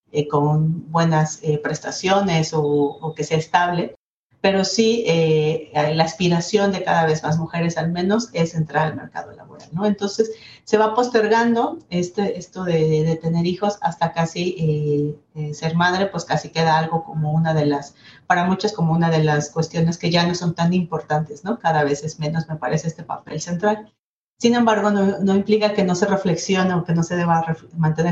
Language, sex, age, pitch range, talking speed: Spanish, female, 40-59, 155-185 Hz, 195 wpm